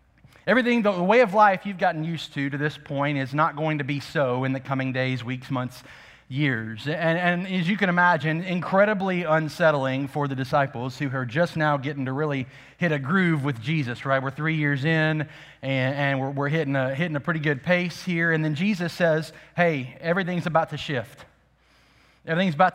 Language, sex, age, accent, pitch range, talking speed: English, male, 30-49, American, 145-180 Hz, 200 wpm